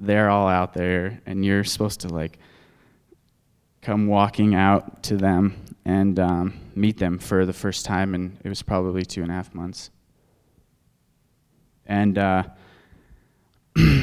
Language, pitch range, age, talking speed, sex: English, 95-105 Hz, 20-39, 140 wpm, male